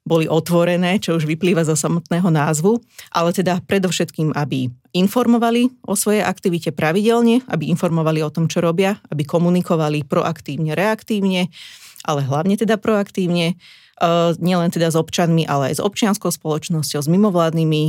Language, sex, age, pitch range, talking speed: Slovak, female, 30-49, 155-185 Hz, 145 wpm